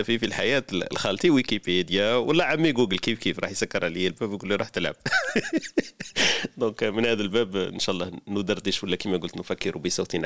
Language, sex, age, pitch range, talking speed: Arabic, male, 40-59, 90-110 Hz, 180 wpm